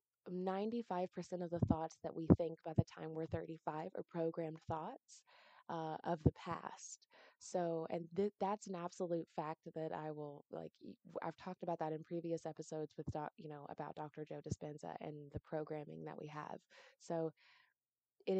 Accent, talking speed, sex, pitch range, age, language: American, 165 wpm, female, 155-180 Hz, 20-39, English